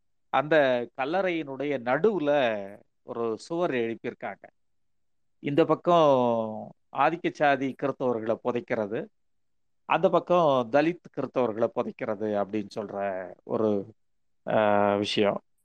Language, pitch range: Tamil, 110-150 Hz